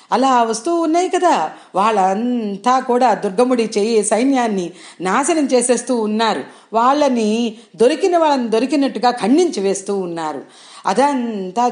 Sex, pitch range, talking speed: female, 220-290 Hz, 100 wpm